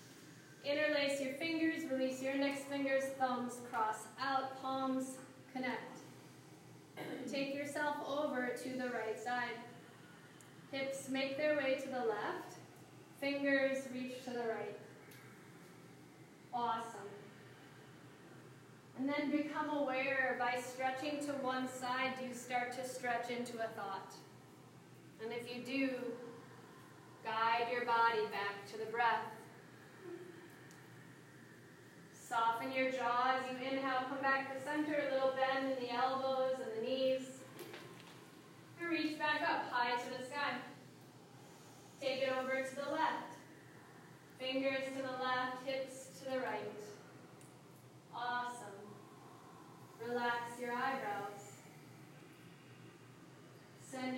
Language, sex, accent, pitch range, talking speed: English, female, American, 240-270 Hz, 115 wpm